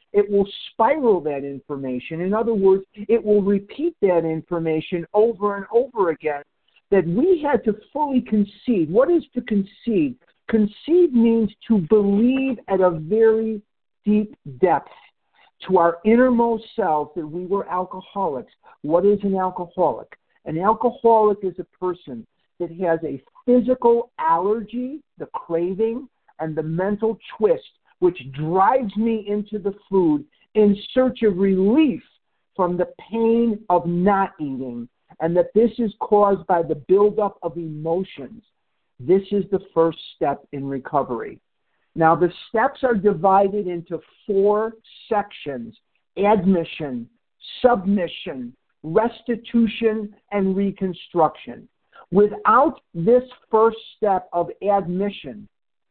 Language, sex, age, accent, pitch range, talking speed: English, male, 50-69, American, 175-230 Hz, 125 wpm